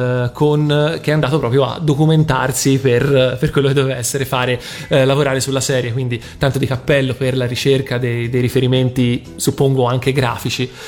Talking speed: 170 wpm